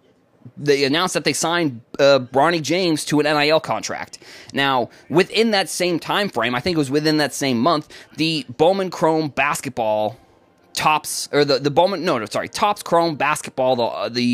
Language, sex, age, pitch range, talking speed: English, male, 20-39, 125-170 Hz, 180 wpm